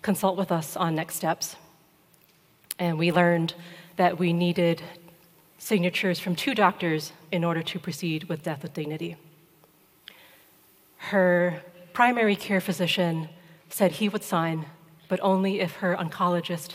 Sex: female